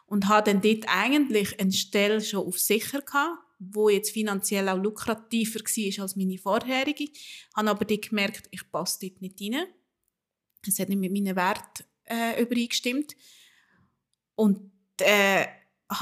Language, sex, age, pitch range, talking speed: German, female, 30-49, 190-220 Hz, 145 wpm